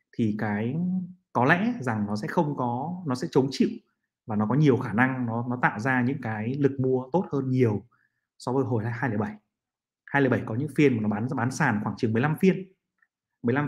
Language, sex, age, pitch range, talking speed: Vietnamese, male, 20-39, 115-145 Hz, 210 wpm